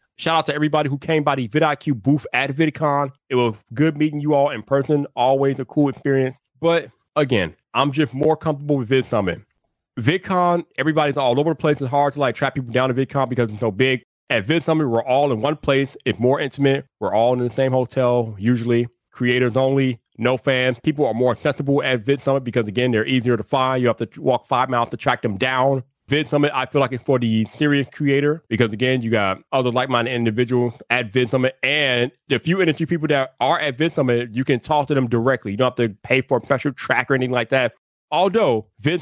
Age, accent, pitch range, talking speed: 30-49, American, 125-150 Hz, 225 wpm